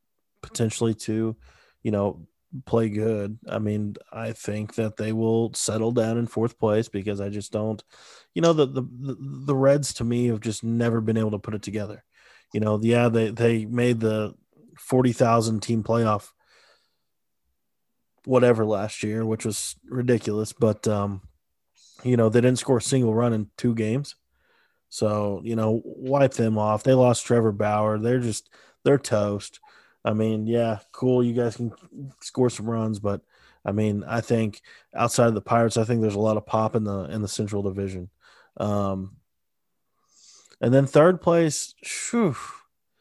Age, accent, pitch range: 20-39, American, 105-120 Hz